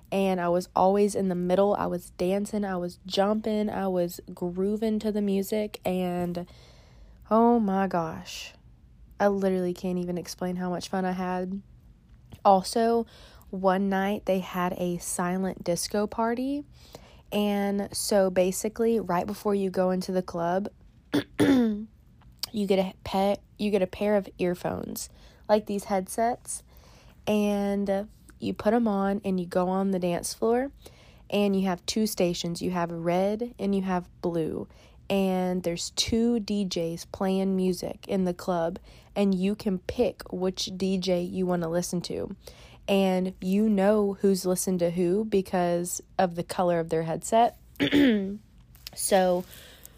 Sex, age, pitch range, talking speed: female, 20-39, 180-205 Hz, 150 wpm